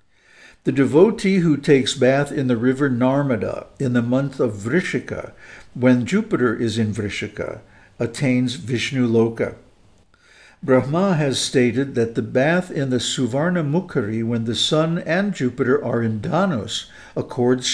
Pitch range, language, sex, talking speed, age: 115-150 Hz, English, male, 135 wpm, 60-79